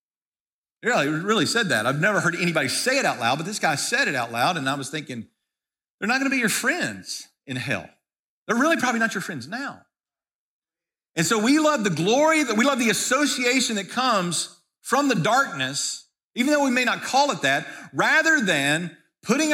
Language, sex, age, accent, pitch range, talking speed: English, male, 50-69, American, 165-245 Hz, 200 wpm